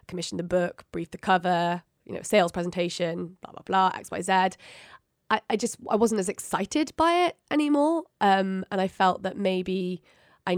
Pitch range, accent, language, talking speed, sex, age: 180-210 Hz, British, English, 175 wpm, female, 20-39